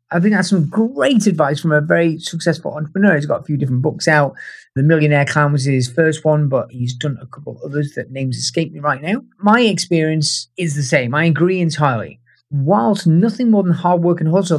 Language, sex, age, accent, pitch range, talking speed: English, male, 30-49, British, 145-185 Hz, 220 wpm